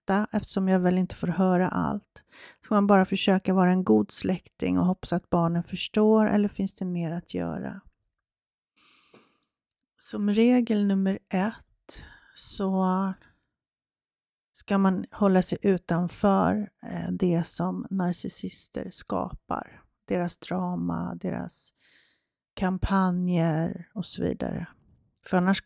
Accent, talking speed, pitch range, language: native, 115 wpm, 175-210 Hz, Swedish